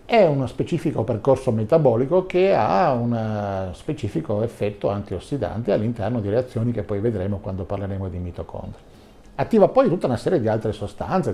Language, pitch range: Italian, 100-130 Hz